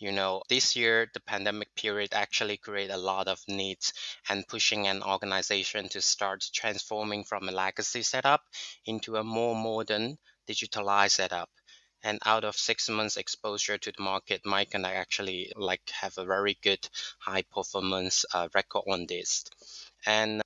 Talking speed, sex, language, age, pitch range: 160 wpm, male, English, 20-39, 100-110 Hz